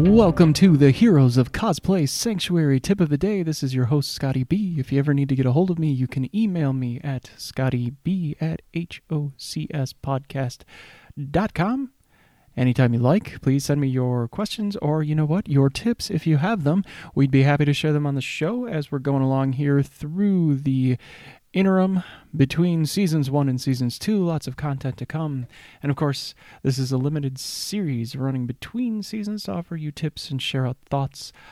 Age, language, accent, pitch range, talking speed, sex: 30-49, English, American, 130-160 Hz, 190 wpm, male